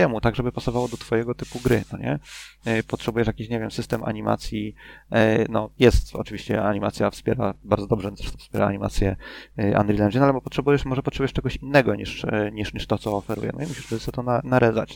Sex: male